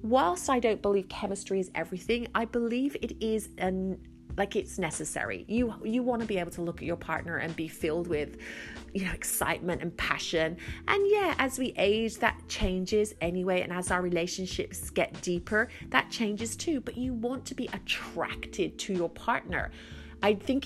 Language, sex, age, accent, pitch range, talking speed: English, female, 30-49, British, 170-230 Hz, 185 wpm